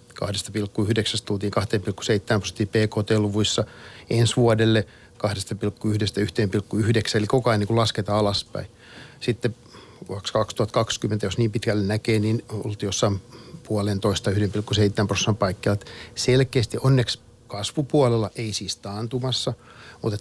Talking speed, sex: 105 wpm, male